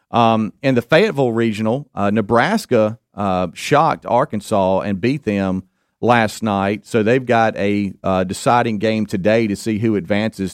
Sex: male